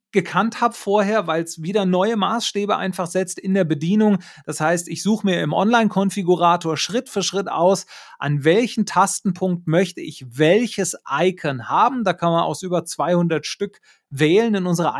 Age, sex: 30-49, male